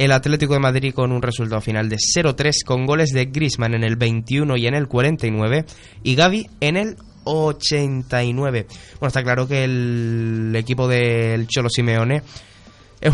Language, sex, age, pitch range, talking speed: Spanish, male, 20-39, 115-155 Hz, 165 wpm